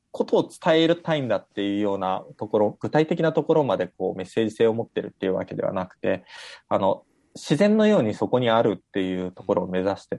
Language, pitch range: Japanese, 100-165 Hz